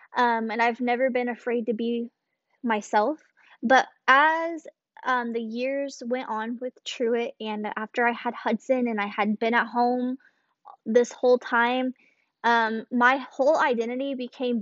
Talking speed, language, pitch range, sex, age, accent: 150 wpm, English, 230-270 Hz, female, 10-29, American